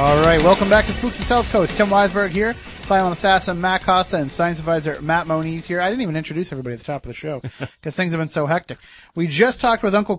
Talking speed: 255 wpm